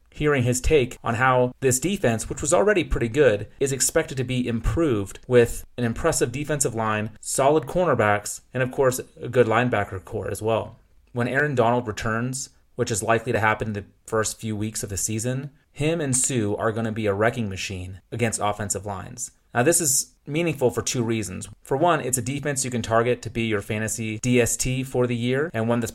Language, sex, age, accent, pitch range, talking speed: English, male, 30-49, American, 105-130 Hz, 205 wpm